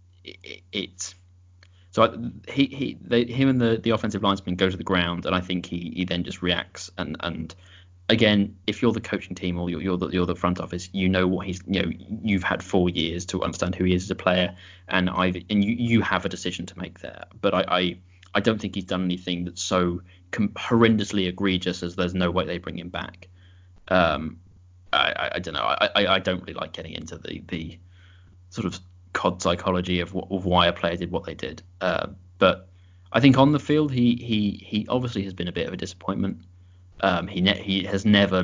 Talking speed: 225 wpm